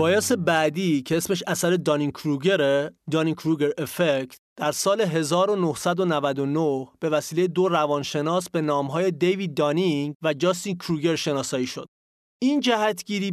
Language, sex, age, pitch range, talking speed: English, male, 30-49, 155-195 Hz, 125 wpm